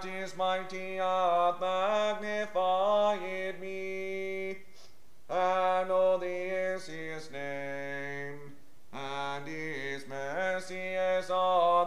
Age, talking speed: 40-59, 75 wpm